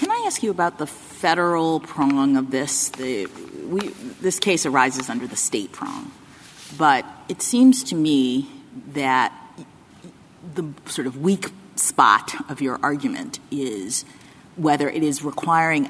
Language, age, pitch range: English, 40-59, 140-175 Hz